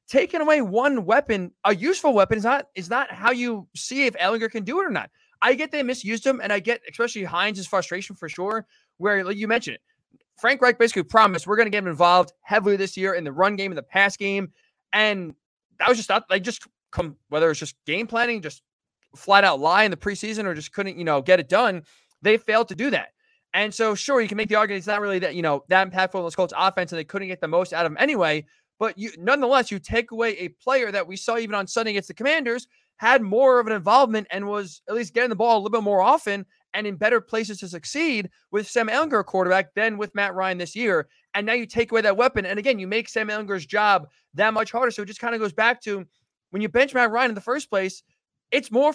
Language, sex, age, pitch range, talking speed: English, male, 20-39, 190-235 Hz, 255 wpm